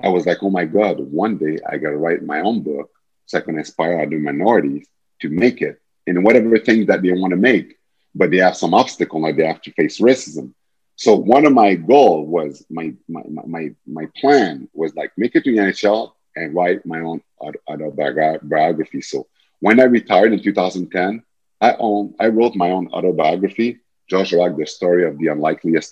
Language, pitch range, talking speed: English, 90-115 Hz, 200 wpm